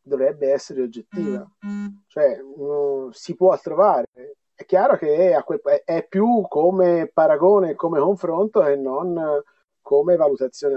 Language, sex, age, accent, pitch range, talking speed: Italian, male, 30-49, native, 140-190 Hz, 115 wpm